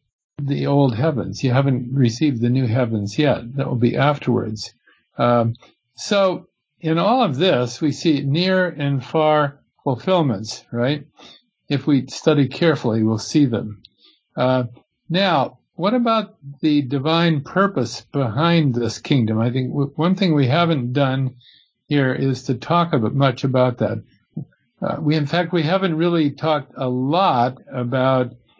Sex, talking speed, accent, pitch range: male, 145 wpm, American, 125-160 Hz